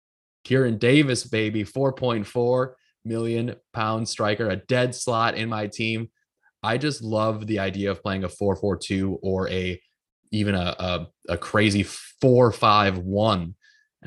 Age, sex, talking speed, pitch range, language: 20-39, male, 120 wpm, 95-110 Hz, English